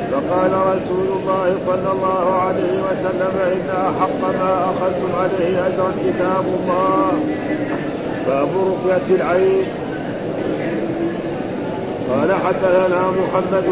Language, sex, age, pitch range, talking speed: Arabic, male, 50-69, 185-190 Hz, 90 wpm